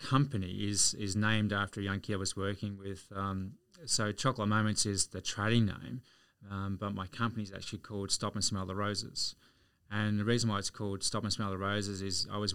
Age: 20-39